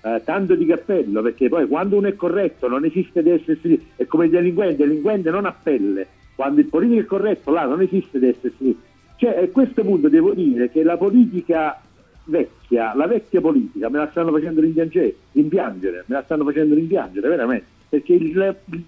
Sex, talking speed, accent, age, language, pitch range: male, 185 wpm, native, 50-69, Italian, 155-245 Hz